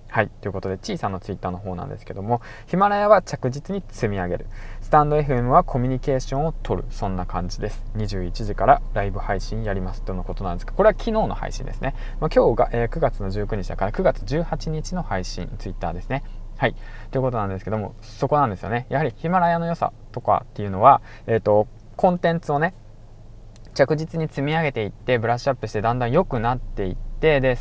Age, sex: 20-39, male